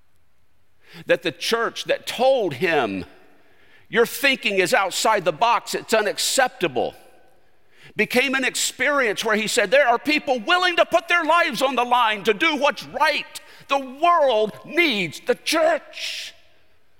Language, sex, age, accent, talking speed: English, male, 50-69, American, 140 wpm